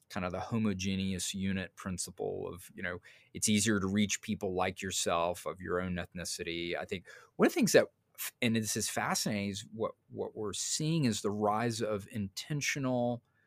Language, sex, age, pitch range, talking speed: English, male, 30-49, 95-115 Hz, 185 wpm